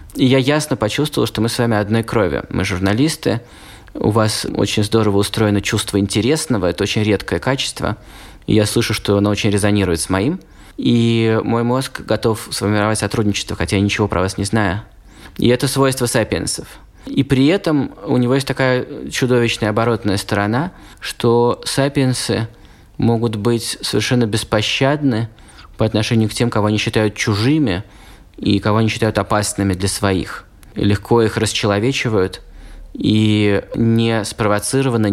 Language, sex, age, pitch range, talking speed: Russian, male, 20-39, 100-120 Hz, 145 wpm